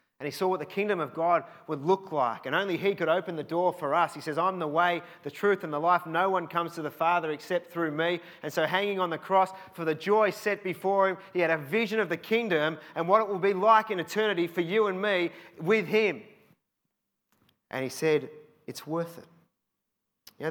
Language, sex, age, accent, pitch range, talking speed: English, male, 30-49, Australian, 145-180 Hz, 235 wpm